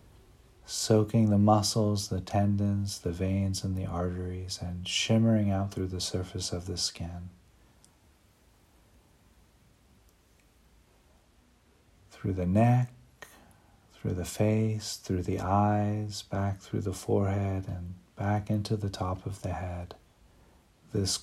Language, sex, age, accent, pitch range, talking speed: English, male, 50-69, American, 95-110 Hz, 115 wpm